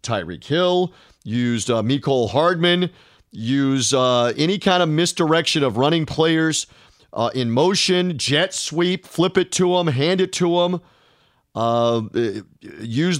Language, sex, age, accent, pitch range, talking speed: English, male, 40-59, American, 135-170 Hz, 135 wpm